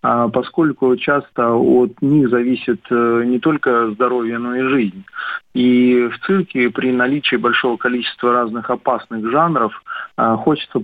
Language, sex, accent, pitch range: Russian, male, native, 120-145 Hz